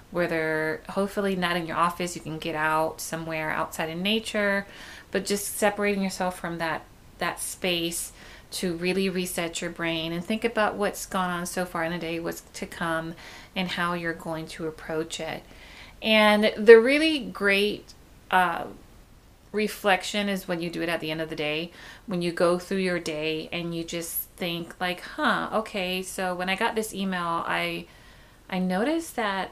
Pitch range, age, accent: 170-210 Hz, 30-49, American